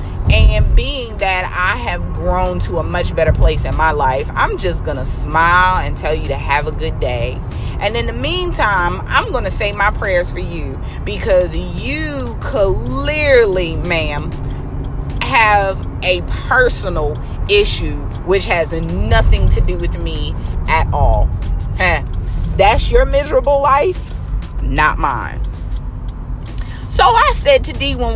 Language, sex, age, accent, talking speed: English, female, 30-49, American, 145 wpm